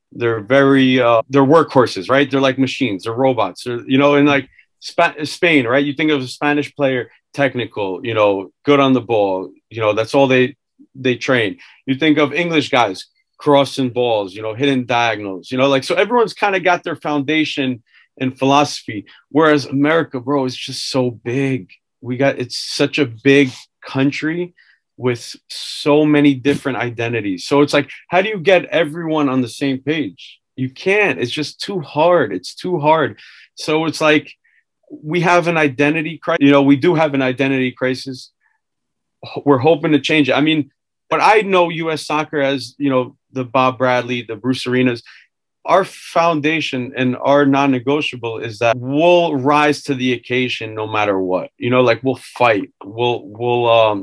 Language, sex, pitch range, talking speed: English, male, 125-150 Hz, 180 wpm